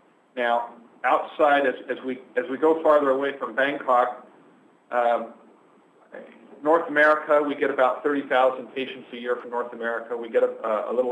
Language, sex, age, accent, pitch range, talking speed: English, male, 40-59, American, 115-155 Hz, 160 wpm